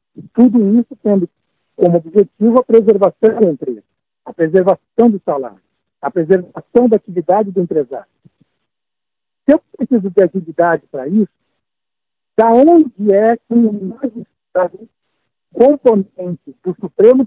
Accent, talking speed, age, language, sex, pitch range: Brazilian, 120 wpm, 60-79, Portuguese, male, 185-235 Hz